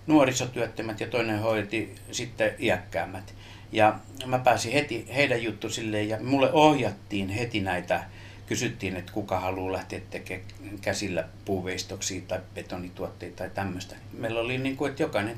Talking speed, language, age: 140 wpm, Finnish, 60-79